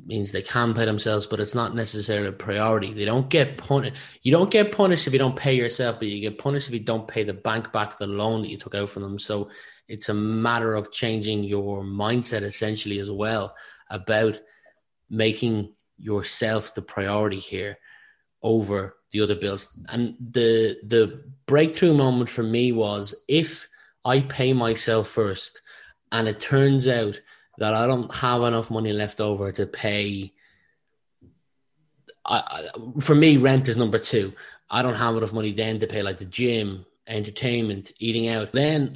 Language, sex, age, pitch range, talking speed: English, male, 20-39, 105-120 Hz, 175 wpm